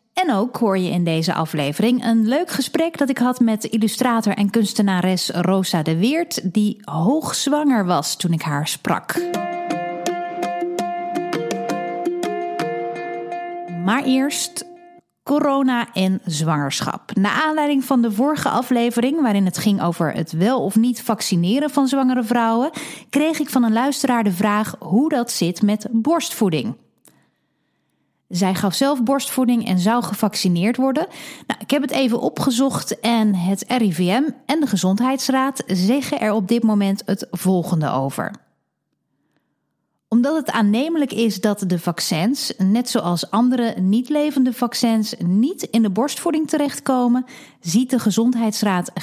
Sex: female